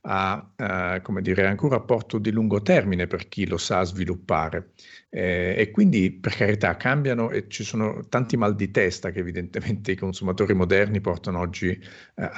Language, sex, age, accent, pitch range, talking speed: Italian, male, 50-69, native, 90-105 Hz, 160 wpm